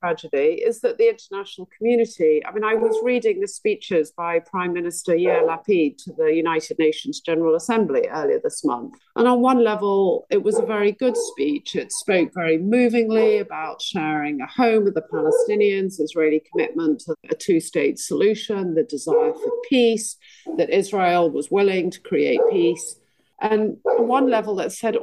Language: English